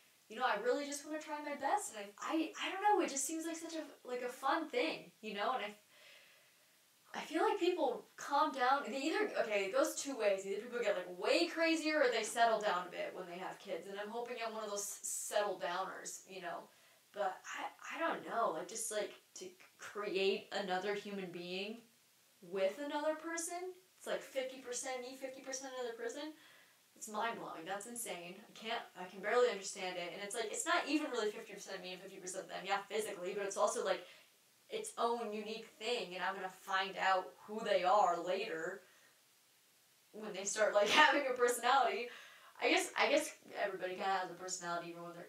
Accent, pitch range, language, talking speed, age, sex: American, 195-285 Hz, English, 210 wpm, 10-29, female